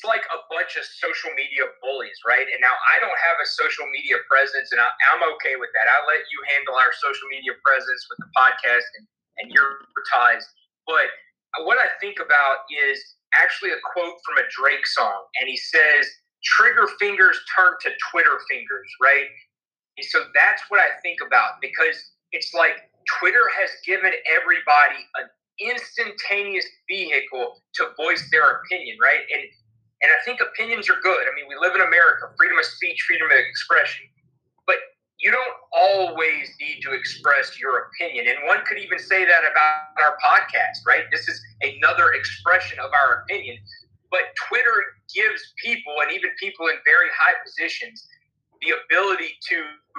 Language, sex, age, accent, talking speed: English, male, 30-49, American, 170 wpm